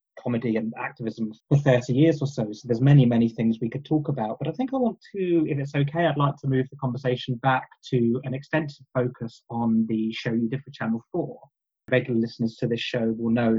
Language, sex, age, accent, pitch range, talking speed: English, male, 20-39, British, 115-135 Hz, 230 wpm